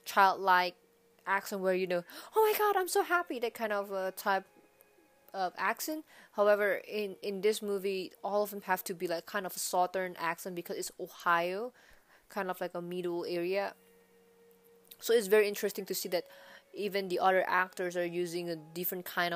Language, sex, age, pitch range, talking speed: English, female, 20-39, 170-195 Hz, 185 wpm